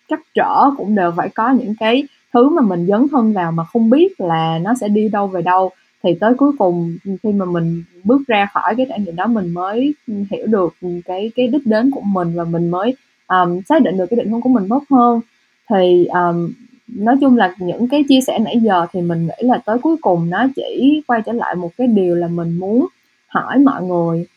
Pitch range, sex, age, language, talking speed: 180-255 Hz, female, 20-39, Vietnamese, 230 wpm